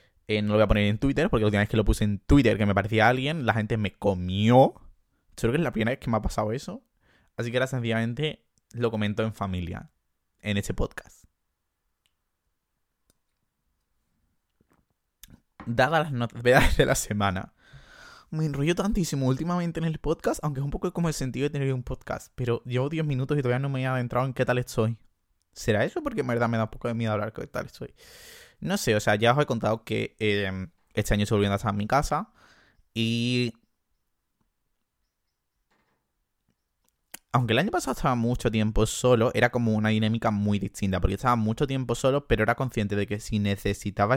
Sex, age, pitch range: male, 20-39, 100-125 Hz